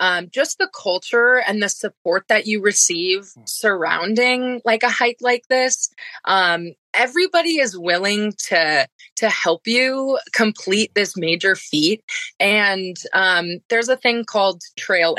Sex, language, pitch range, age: female, English, 185-250 Hz, 20-39